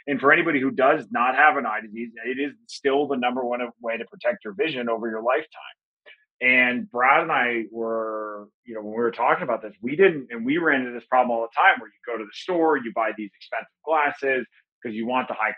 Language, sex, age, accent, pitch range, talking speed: English, male, 30-49, American, 115-140 Hz, 245 wpm